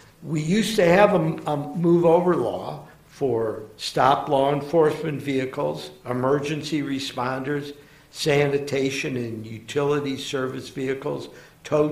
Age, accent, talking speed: 60-79, American, 100 wpm